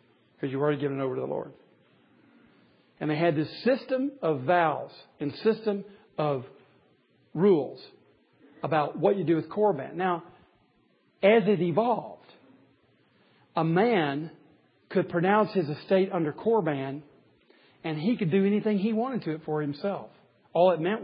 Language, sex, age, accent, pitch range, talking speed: English, male, 50-69, American, 155-225 Hz, 150 wpm